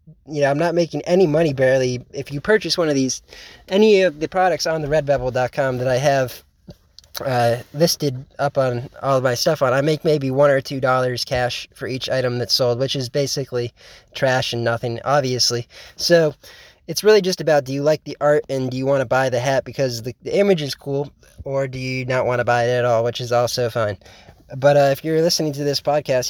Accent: American